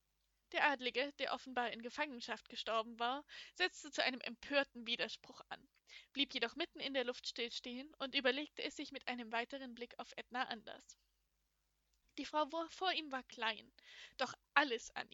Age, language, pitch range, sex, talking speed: 10-29, German, 240-290 Hz, female, 165 wpm